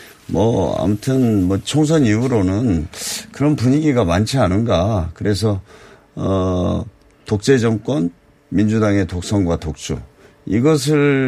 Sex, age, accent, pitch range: male, 50-69, native, 100-130 Hz